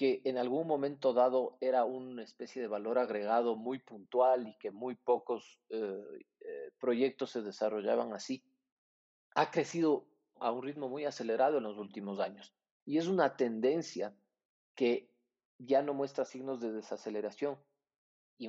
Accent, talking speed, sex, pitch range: Mexican, 150 wpm, male, 110-135 Hz